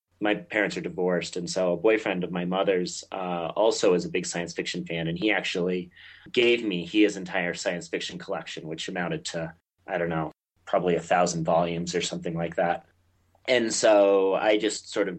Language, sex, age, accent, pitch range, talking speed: English, male, 30-49, American, 85-105 Hz, 195 wpm